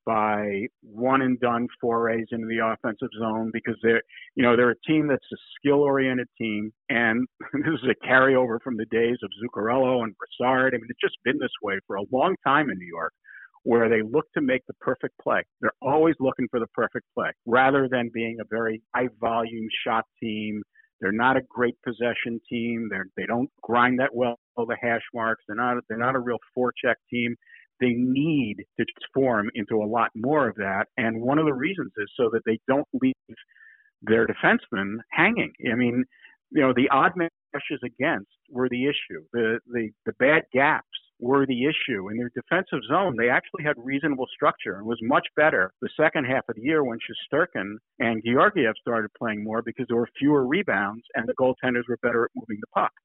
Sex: male